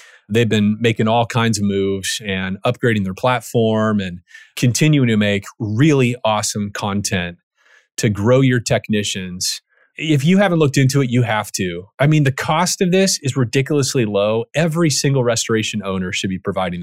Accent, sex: American, male